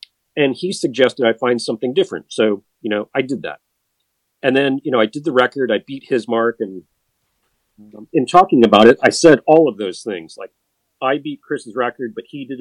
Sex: male